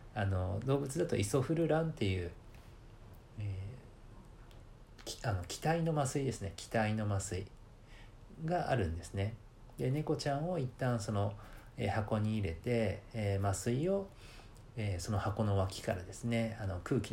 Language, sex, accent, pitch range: Japanese, male, native, 100-130 Hz